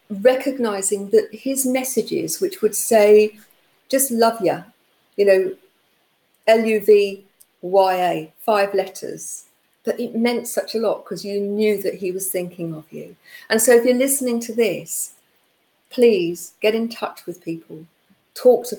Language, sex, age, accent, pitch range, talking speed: English, female, 50-69, British, 175-225 Hz, 145 wpm